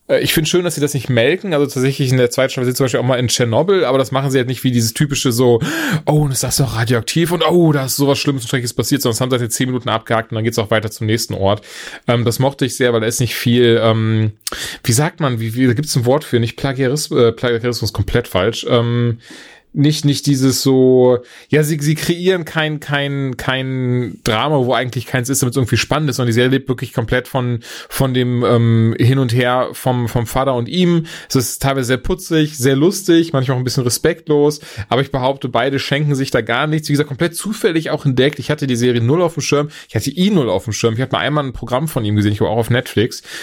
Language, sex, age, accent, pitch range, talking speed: German, male, 20-39, German, 120-145 Hz, 255 wpm